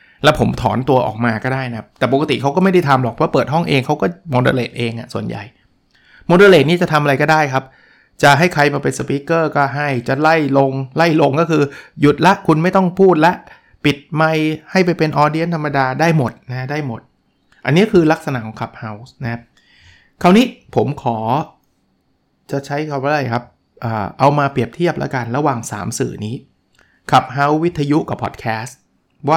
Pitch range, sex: 120-155 Hz, male